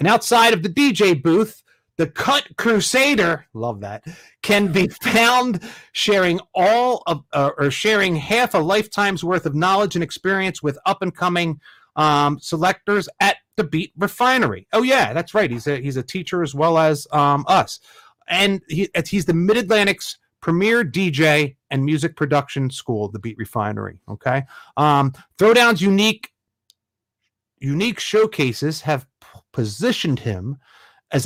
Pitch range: 140-205 Hz